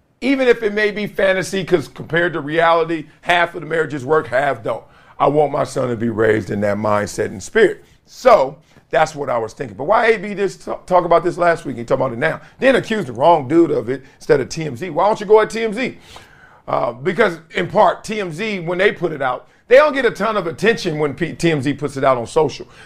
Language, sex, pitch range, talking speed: English, male, 150-205 Hz, 235 wpm